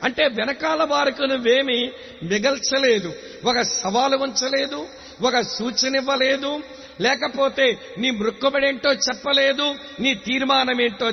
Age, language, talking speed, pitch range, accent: 60-79, English, 90 wpm, 230-275 Hz, Indian